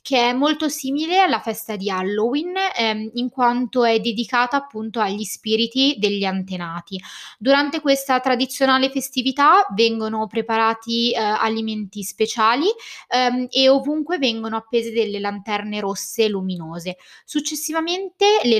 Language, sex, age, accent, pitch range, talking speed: Italian, female, 20-39, native, 215-265 Hz, 125 wpm